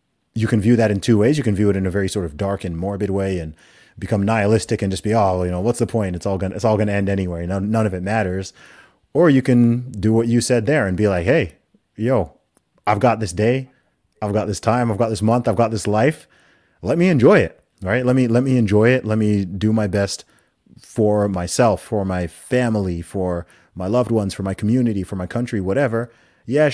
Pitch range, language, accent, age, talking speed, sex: 85-110 Hz, English, American, 30-49, 240 wpm, male